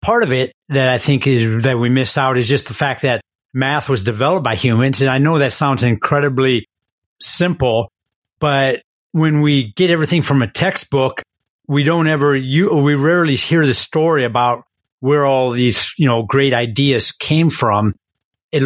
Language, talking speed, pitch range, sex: English, 180 wpm, 130-155 Hz, male